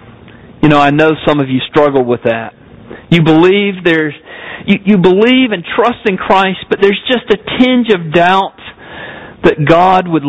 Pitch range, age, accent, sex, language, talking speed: 145-180 Hz, 50-69, American, male, English, 175 wpm